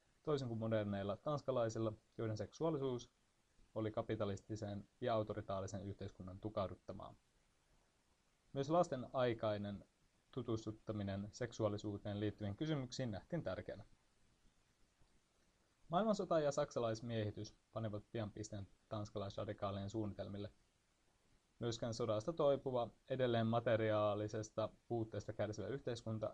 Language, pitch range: Finnish, 100-115 Hz